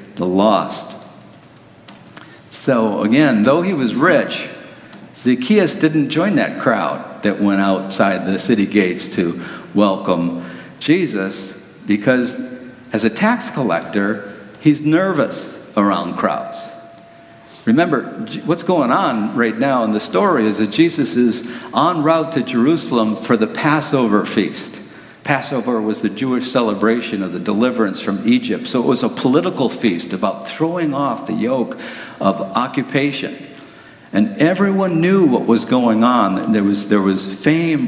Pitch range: 105-130 Hz